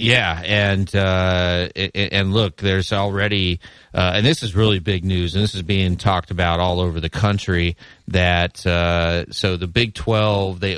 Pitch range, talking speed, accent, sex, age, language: 90-105 Hz, 175 wpm, American, male, 30-49, English